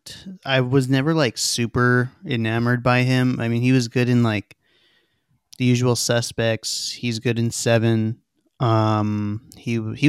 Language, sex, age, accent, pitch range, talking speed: English, male, 20-39, American, 110-135 Hz, 150 wpm